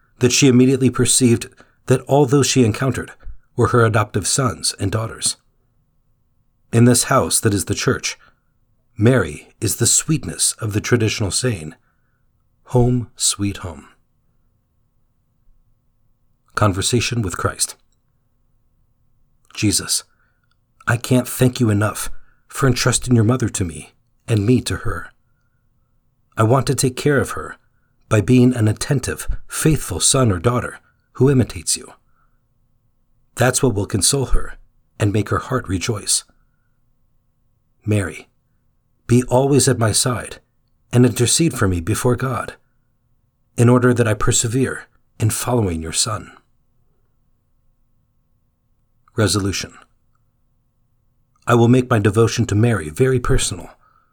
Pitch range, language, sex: 110-125 Hz, English, male